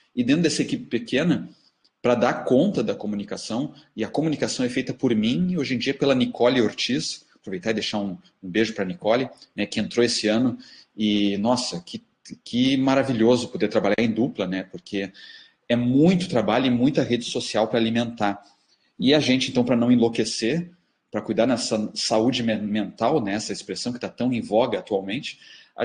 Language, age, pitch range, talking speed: Portuguese, 30-49, 110-150 Hz, 185 wpm